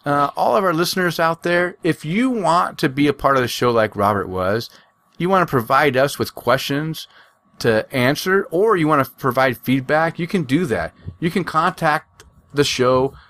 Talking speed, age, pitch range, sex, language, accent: 200 wpm, 40-59, 125-165 Hz, male, English, American